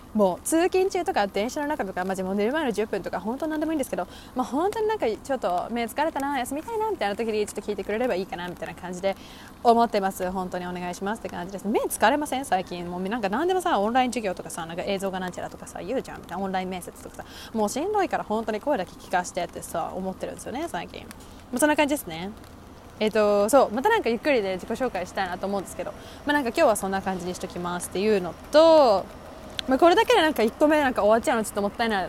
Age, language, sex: 20-39, Japanese, female